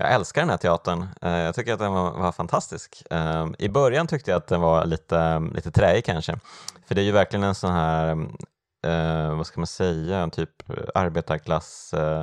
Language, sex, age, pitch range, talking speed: Swedish, male, 20-39, 85-100 Hz, 180 wpm